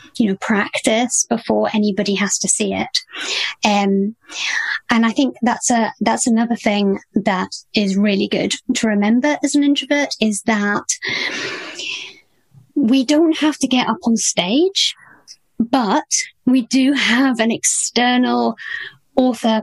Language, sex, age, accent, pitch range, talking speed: English, female, 30-49, British, 210-275 Hz, 135 wpm